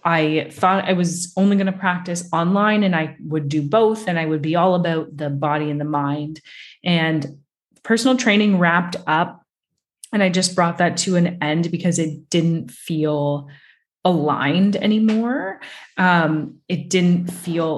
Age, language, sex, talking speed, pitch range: 20-39, English, female, 160 wpm, 160-200 Hz